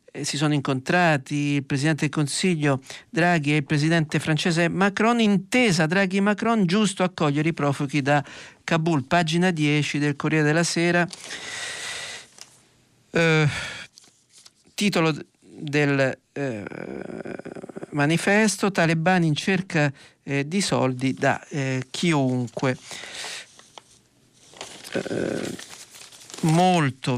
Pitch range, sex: 140-185 Hz, male